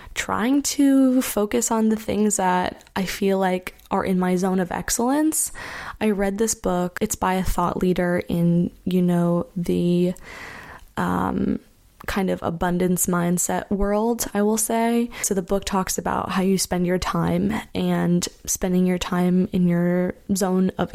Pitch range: 180-210 Hz